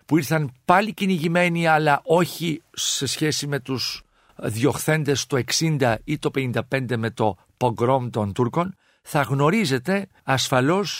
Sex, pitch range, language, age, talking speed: male, 125-165 Hz, Greek, 50-69, 130 wpm